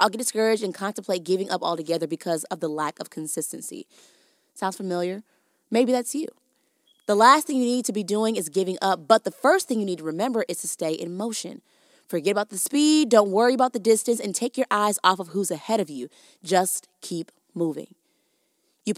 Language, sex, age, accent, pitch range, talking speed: English, female, 20-39, American, 180-245 Hz, 210 wpm